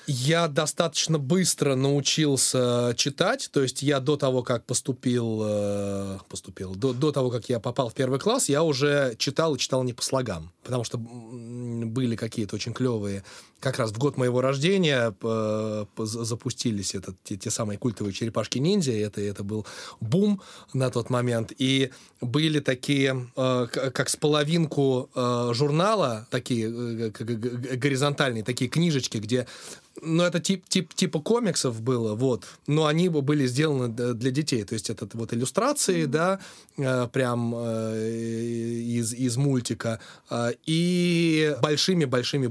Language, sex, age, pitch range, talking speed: Russian, male, 20-39, 115-150 Hz, 135 wpm